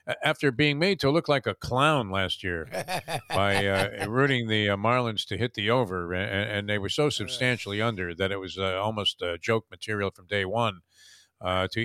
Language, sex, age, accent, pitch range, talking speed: English, male, 50-69, American, 100-130 Hz, 205 wpm